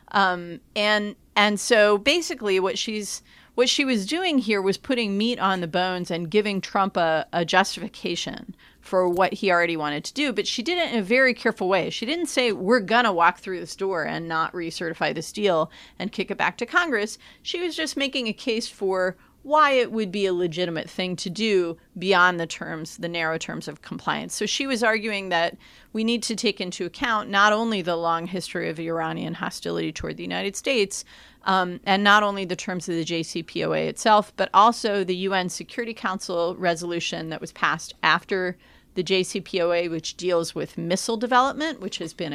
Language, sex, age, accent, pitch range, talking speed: English, female, 30-49, American, 170-220 Hz, 195 wpm